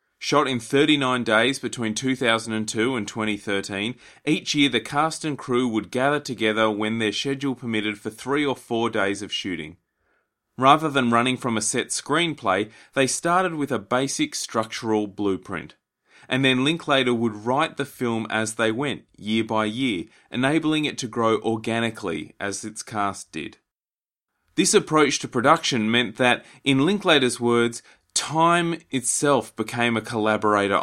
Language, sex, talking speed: English, male, 150 wpm